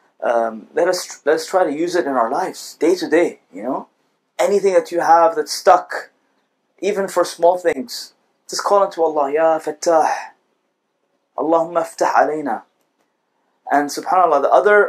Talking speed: 150 wpm